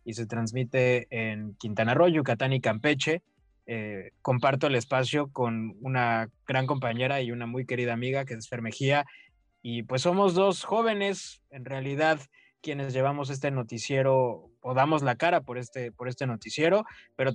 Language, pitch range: Spanish, 125-155 Hz